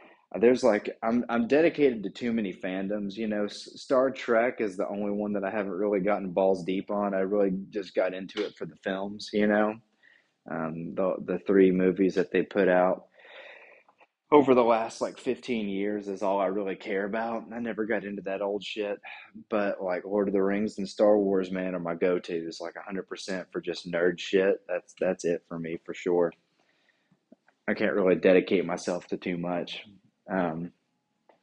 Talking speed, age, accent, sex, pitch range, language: 195 wpm, 20-39, American, male, 90-105 Hz, English